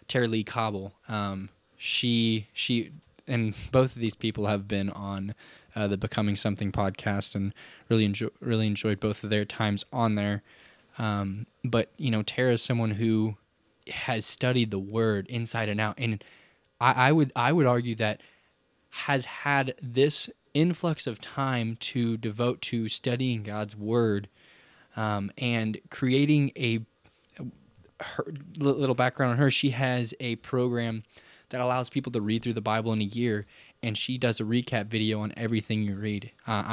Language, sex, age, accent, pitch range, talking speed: English, male, 10-29, American, 105-125 Hz, 165 wpm